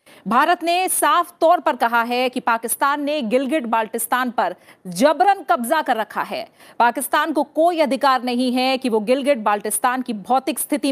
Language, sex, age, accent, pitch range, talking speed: Hindi, female, 40-59, native, 235-290 Hz, 170 wpm